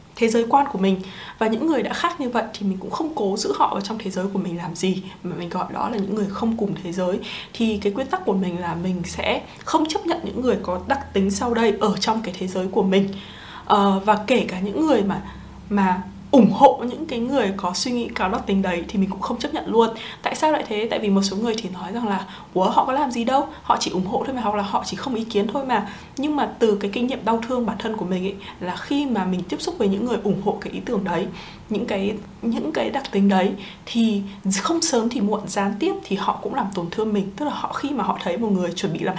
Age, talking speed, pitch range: 20-39, 285 wpm, 190-240 Hz